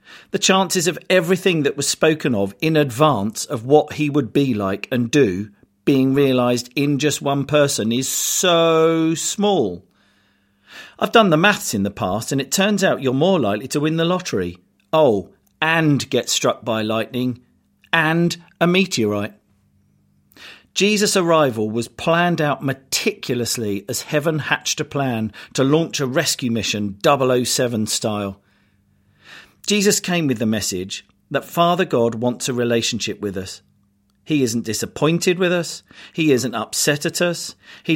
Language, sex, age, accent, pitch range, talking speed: English, male, 40-59, British, 110-160 Hz, 150 wpm